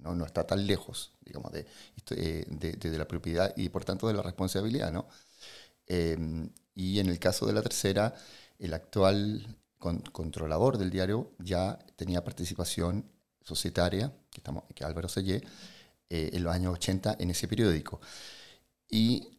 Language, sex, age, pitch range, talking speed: Spanish, male, 40-59, 85-100 Hz, 160 wpm